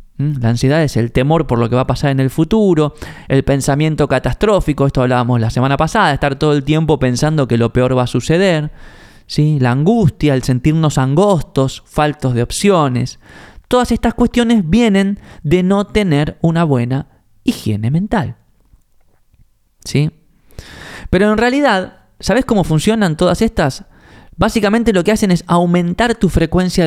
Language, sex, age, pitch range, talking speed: Spanish, male, 20-39, 130-185 Hz, 150 wpm